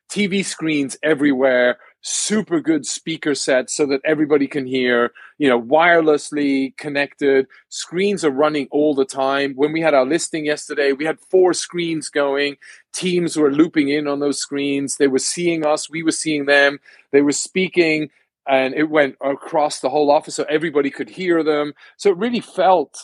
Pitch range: 130-155 Hz